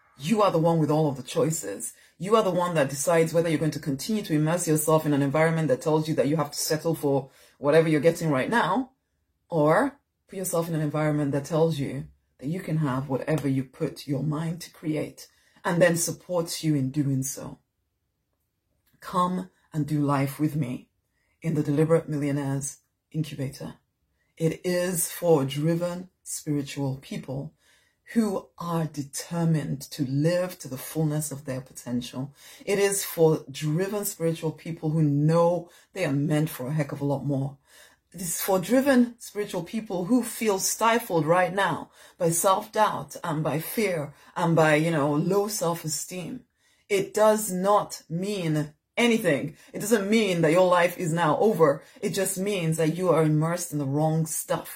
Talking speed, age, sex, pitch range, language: 175 wpm, 30-49, female, 145-180 Hz, English